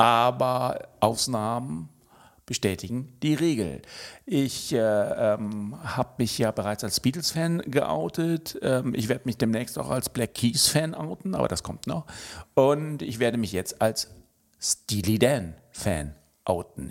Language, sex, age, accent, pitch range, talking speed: German, male, 50-69, German, 105-130 Hz, 135 wpm